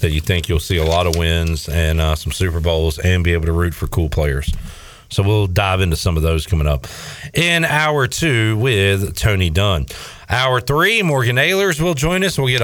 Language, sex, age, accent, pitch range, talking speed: English, male, 40-59, American, 90-125 Hz, 220 wpm